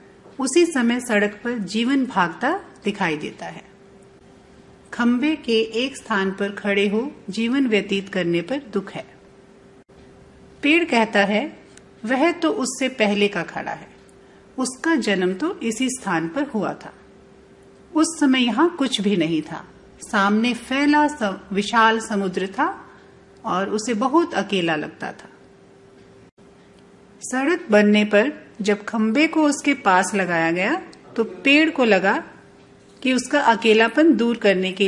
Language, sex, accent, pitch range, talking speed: English, female, Indian, 200-280 Hz, 135 wpm